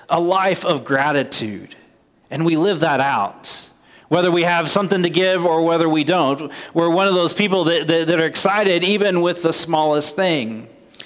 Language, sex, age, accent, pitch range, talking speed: English, male, 30-49, American, 155-195 Hz, 185 wpm